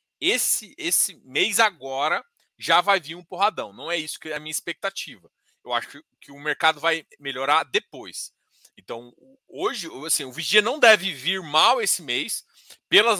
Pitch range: 150-210 Hz